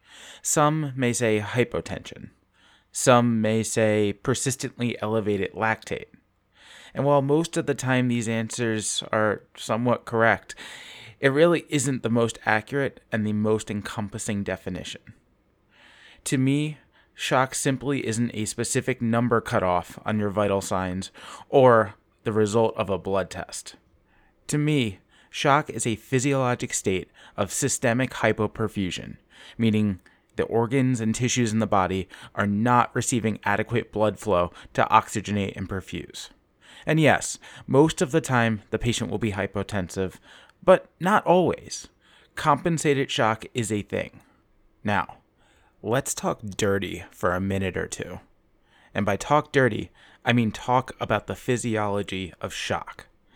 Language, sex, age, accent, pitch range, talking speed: Hebrew, male, 30-49, American, 105-130 Hz, 135 wpm